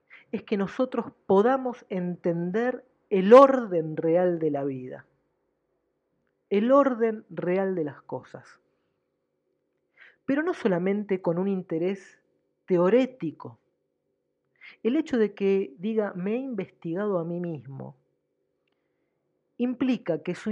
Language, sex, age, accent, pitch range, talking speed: Spanish, female, 40-59, Argentinian, 170-235 Hz, 110 wpm